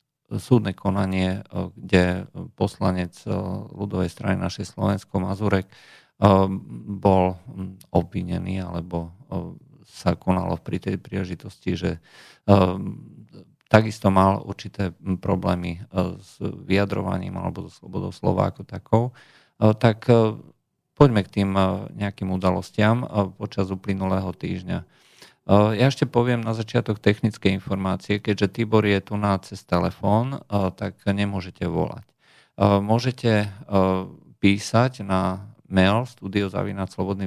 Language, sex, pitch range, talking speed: Slovak, male, 95-110 Hz, 95 wpm